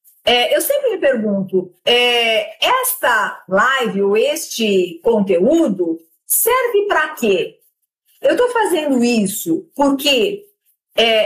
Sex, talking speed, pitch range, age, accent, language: female, 95 wpm, 220-330 Hz, 50-69, Brazilian, Portuguese